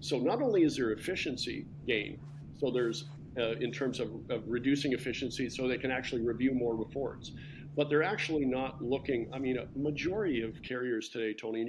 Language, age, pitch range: English, 50-69, 115-140 Hz